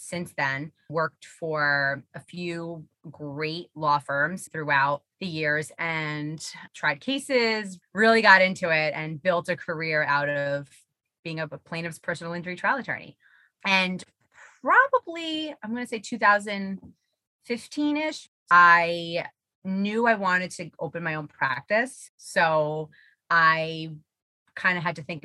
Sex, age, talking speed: female, 20-39, 135 wpm